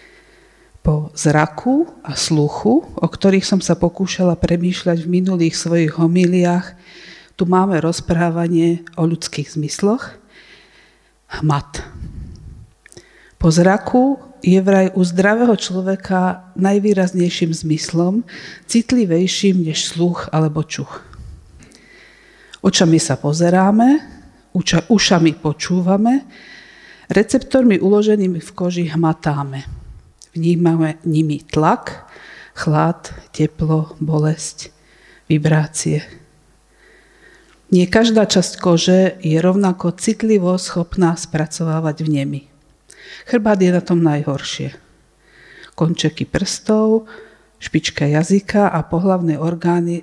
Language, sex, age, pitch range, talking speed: Slovak, female, 50-69, 160-195 Hz, 90 wpm